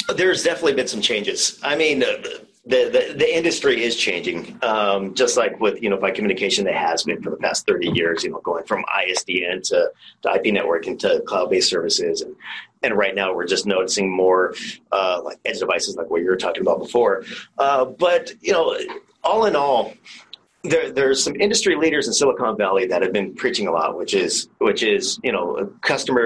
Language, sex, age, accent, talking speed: English, male, 40-59, American, 205 wpm